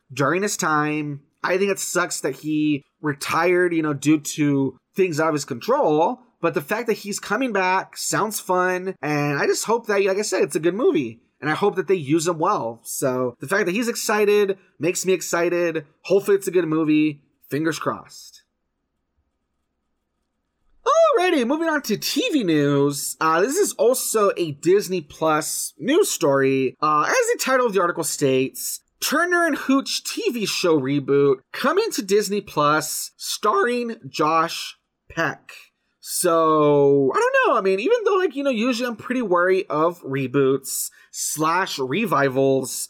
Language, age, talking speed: English, 20-39, 165 wpm